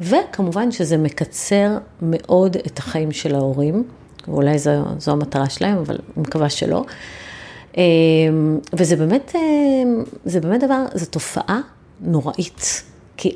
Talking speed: 110 wpm